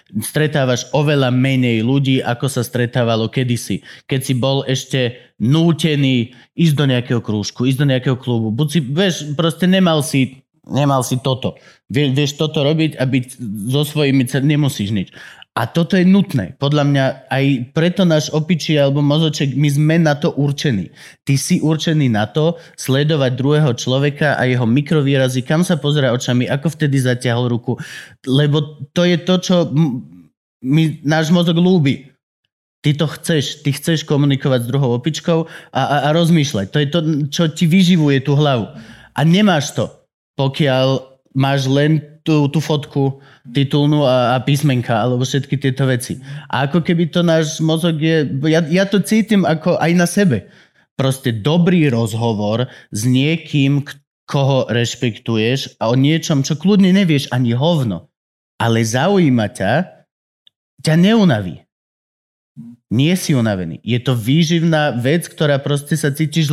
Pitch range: 125-160 Hz